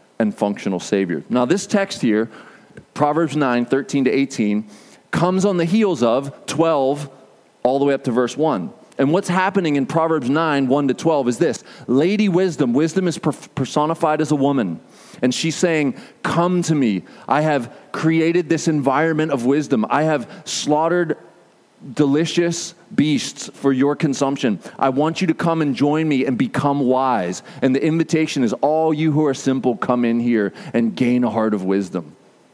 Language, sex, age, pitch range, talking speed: English, male, 30-49, 125-165 Hz, 175 wpm